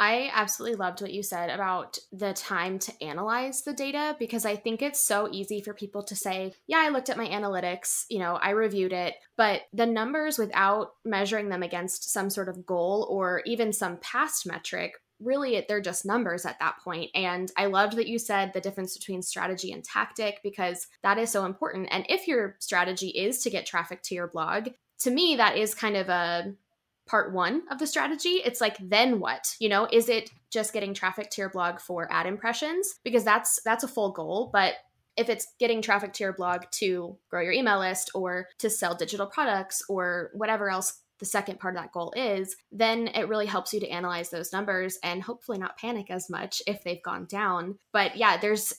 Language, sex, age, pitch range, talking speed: English, female, 10-29, 185-220 Hz, 210 wpm